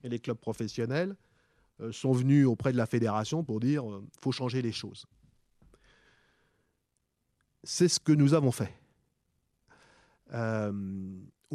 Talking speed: 125 wpm